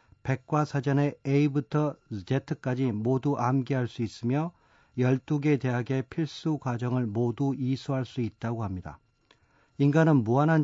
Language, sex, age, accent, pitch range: Korean, male, 40-59, native, 120-155 Hz